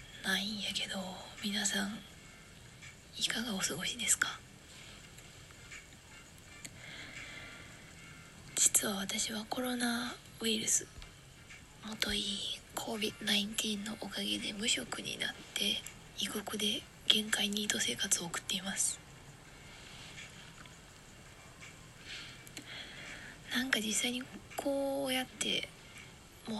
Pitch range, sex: 195-230 Hz, female